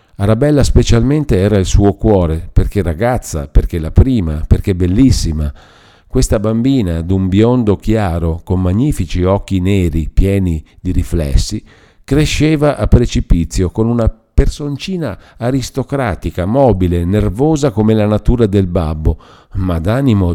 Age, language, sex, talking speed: 50-69, Italian, male, 120 wpm